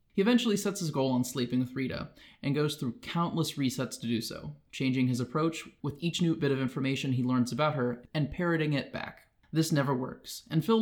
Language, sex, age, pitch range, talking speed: English, male, 20-39, 125-155 Hz, 215 wpm